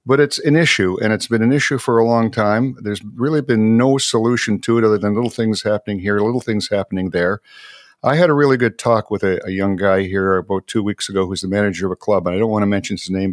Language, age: English, 50-69